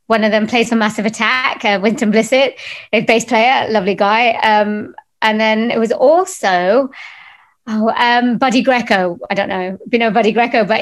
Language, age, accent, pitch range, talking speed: English, 30-49, British, 205-250 Hz, 190 wpm